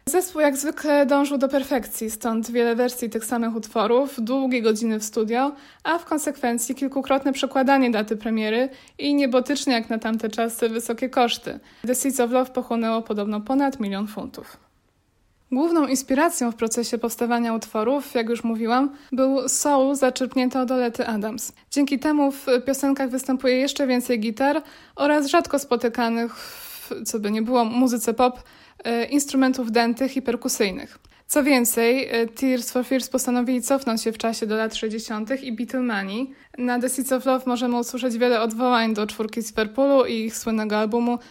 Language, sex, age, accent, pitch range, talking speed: Polish, female, 20-39, native, 230-270 Hz, 160 wpm